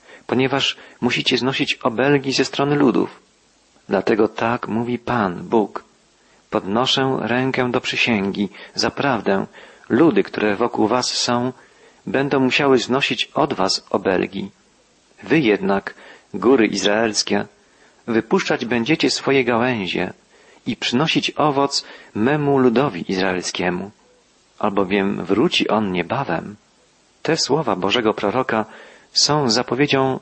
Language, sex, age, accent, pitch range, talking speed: Polish, male, 40-59, native, 110-135 Hz, 105 wpm